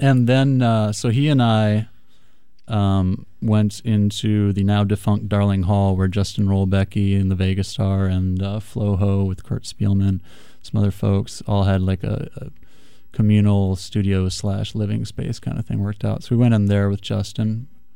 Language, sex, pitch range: English, male, 95-105 Hz